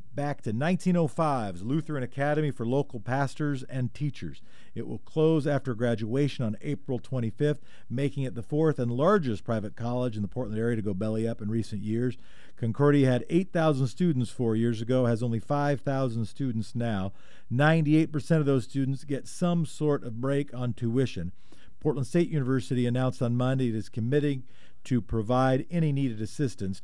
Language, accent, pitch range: English, American, 115-150 Hz